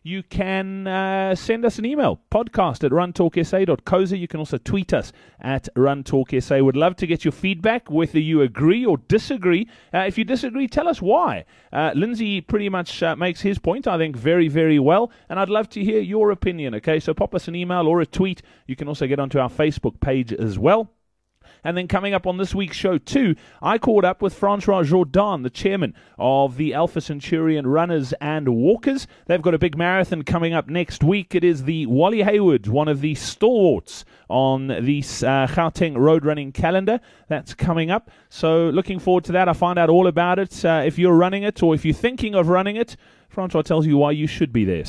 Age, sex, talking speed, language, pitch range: 30-49, male, 210 wpm, English, 150-190 Hz